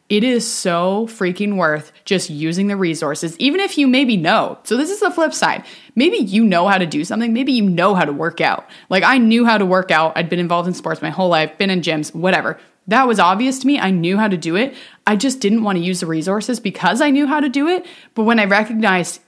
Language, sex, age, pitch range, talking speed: English, female, 20-39, 180-255 Hz, 260 wpm